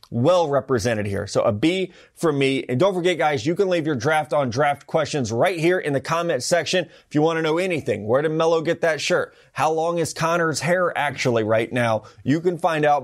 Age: 30-49